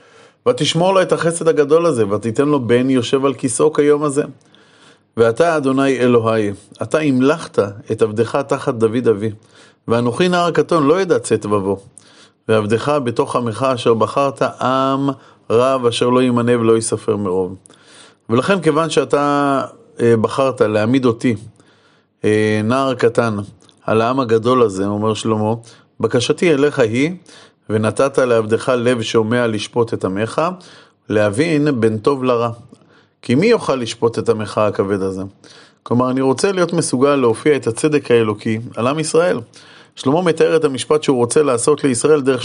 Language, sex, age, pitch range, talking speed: Hebrew, male, 30-49, 115-145 Hz, 145 wpm